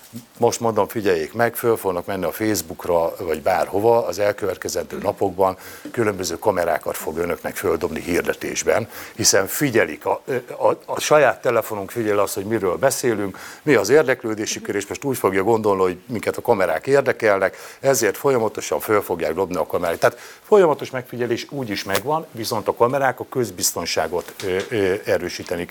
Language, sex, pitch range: Hungarian, male, 100-150 Hz